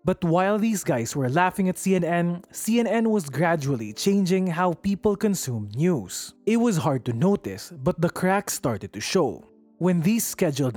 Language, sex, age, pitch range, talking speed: English, male, 20-39, 135-200 Hz, 165 wpm